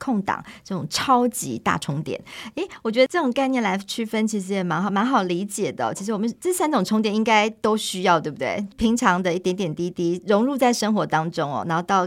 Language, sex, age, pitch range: Chinese, male, 40-59, 170-225 Hz